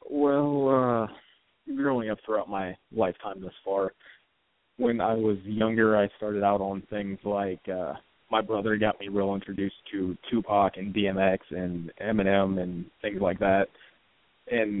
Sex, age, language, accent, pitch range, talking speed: male, 20-39, English, American, 100-115 Hz, 150 wpm